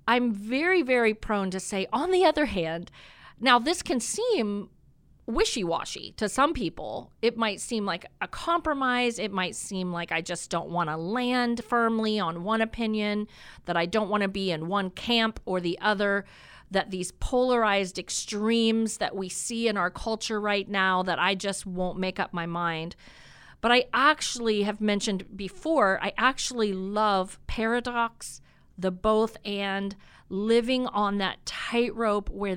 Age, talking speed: 40-59, 160 wpm